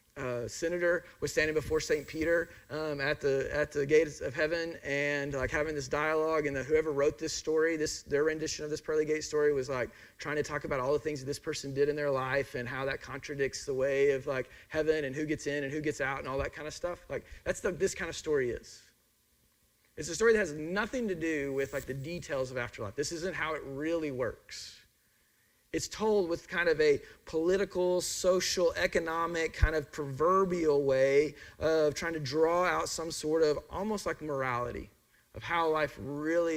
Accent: American